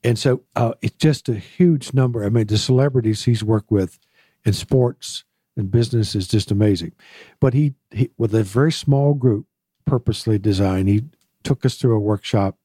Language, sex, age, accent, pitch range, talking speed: English, male, 60-79, American, 105-130 Hz, 180 wpm